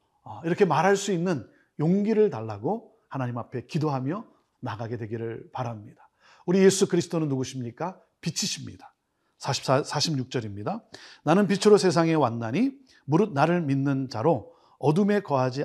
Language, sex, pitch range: Korean, male, 125-185 Hz